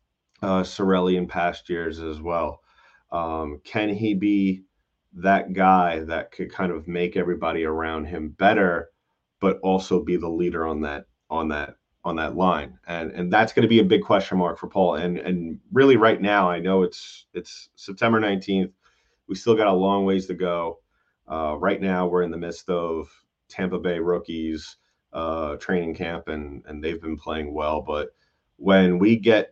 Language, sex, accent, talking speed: English, male, American, 180 wpm